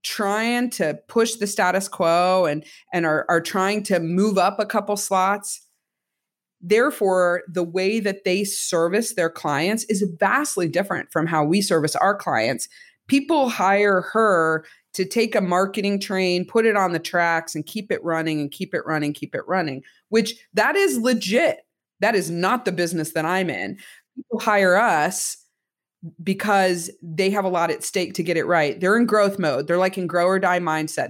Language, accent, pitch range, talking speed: English, American, 170-215 Hz, 185 wpm